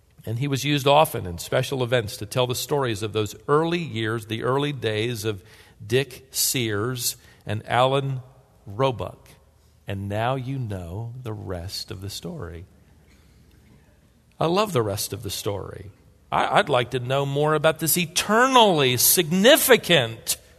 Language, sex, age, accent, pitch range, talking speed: English, male, 50-69, American, 110-170 Hz, 145 wpm